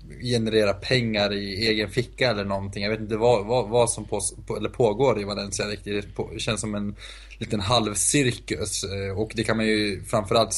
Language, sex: Swedish, male